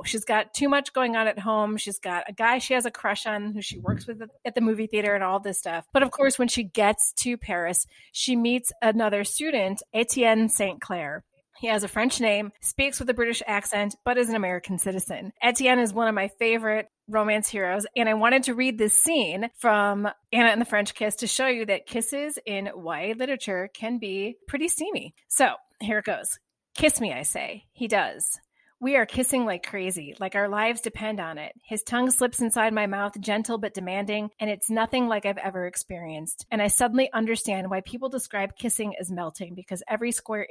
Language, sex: English, female